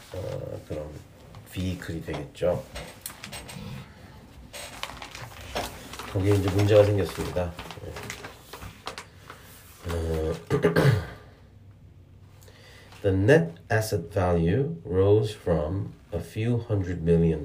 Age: 40-59